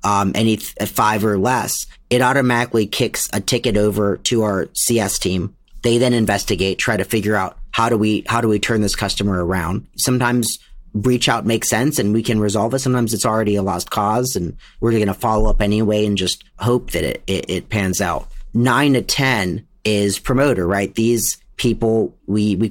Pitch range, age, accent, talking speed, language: 105-120 Hz, 40-59, American, 195 wpm, English